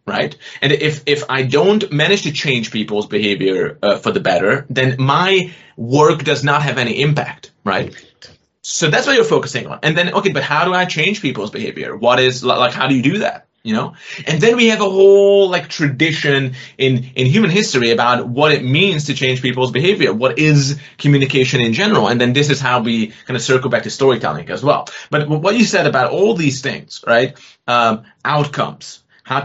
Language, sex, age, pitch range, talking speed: English, male, 30-49, 130-175 Hz, 205 wpm